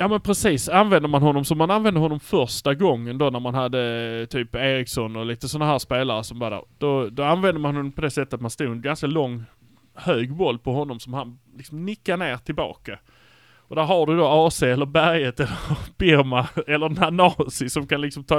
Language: Swedish